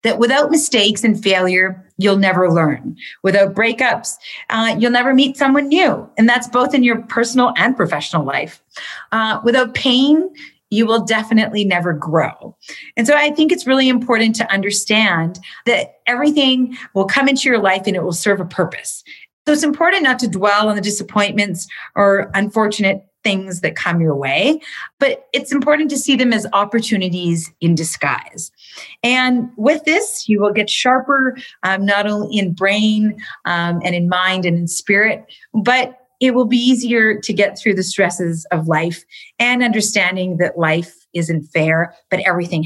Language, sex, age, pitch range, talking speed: English, female, 40-59, 185-250 Hz, 170 wpm